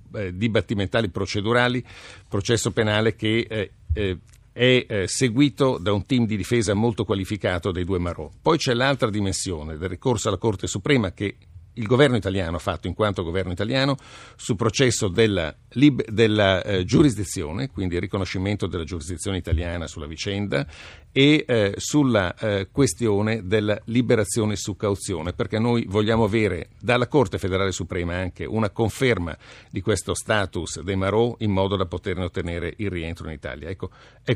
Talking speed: 155 wpm